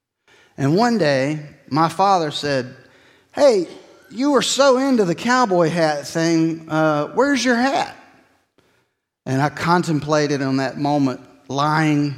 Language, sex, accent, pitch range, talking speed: English, male, American, 130-165 Hz, 130 wpm